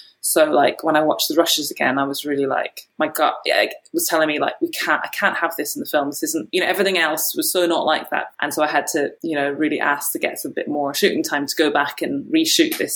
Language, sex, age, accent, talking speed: English, female, 20-39, British, 280 wpm